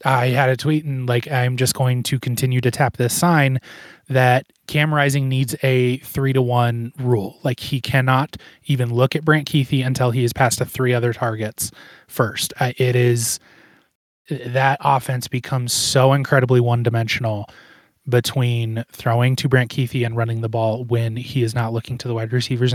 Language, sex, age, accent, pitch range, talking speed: English, male, 20-39, American, 115-140 Hz, 180 wpm